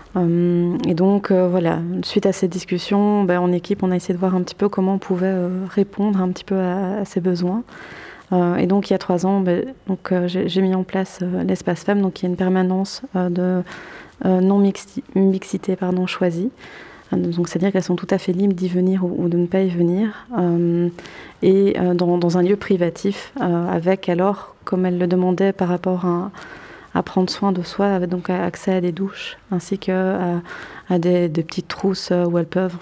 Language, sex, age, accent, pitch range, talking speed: French, female, 20-39, French, 180-195 Hz, 220 wpm